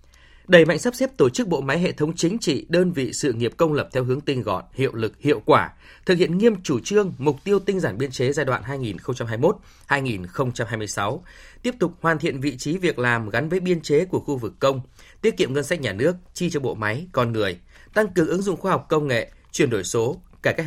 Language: Vietnamese